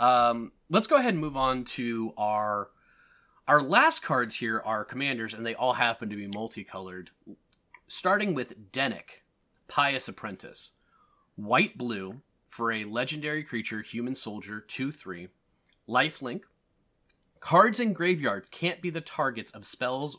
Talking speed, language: 140 wpm, English